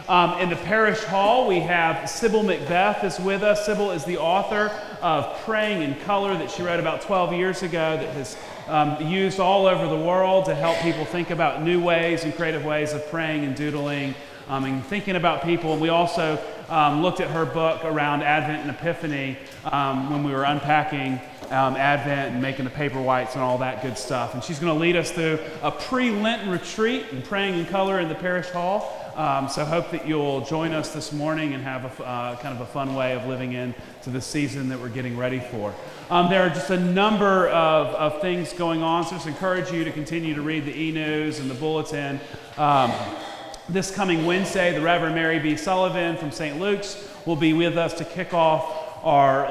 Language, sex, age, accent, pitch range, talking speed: English, male, 30-49, American, 145-180 Hz, 210 wpm